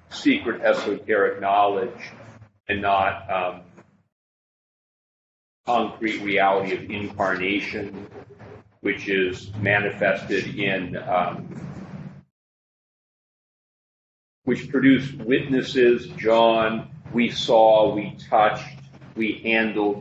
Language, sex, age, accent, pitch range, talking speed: English, male, 40-59, American, 100-120 Hz, 75 wpm